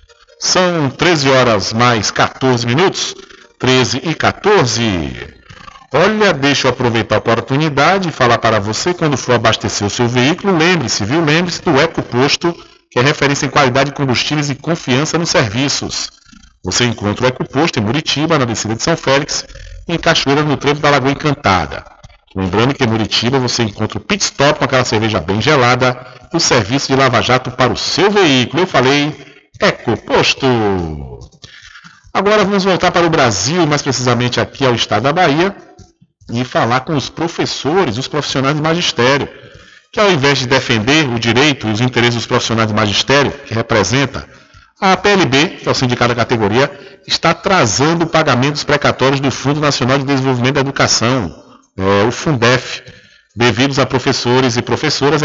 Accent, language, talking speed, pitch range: Brazilian, Portuguese, 165 wpm, 120-150 Hz